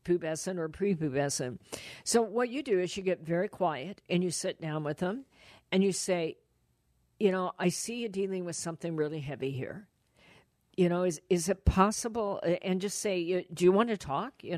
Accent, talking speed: American, 195 wpm